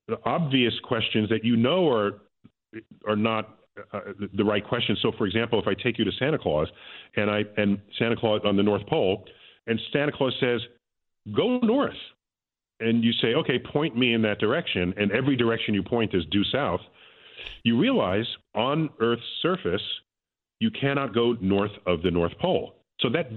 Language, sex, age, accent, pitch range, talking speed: English, male, 40-59, American, 105-150 Hz, 180 wpm